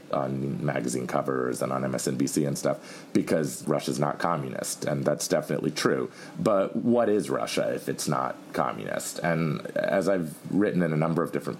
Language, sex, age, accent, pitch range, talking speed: English, male, 40-59, American, 70-80 Hz, 170 wpm